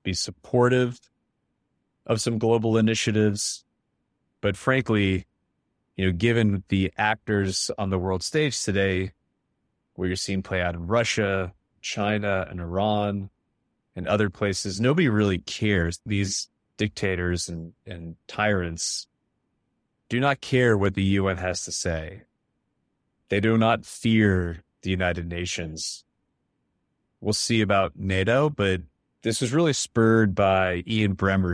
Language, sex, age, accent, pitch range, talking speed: English, male, 30-49, American, 90-110 Hz, 125 wpm